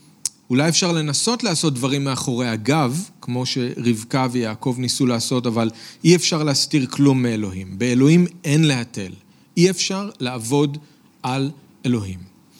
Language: Hebrew